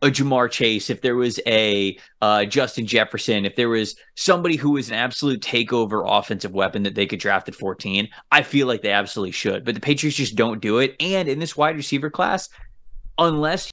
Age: 20-39